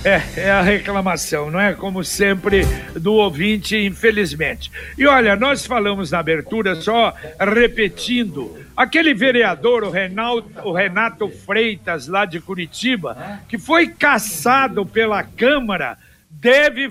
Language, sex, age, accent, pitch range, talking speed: Portuguese, male, 60-79, Brazilian, 205-260 Hz, 120 wpm